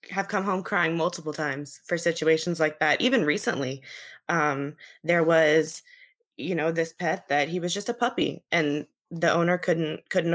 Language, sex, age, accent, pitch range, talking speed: English, female, 20-39, American, 165-190 Hz, 175 wpm